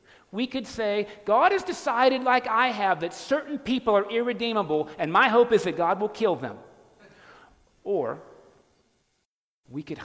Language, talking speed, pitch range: English, 155 wpm, 135-200 Hz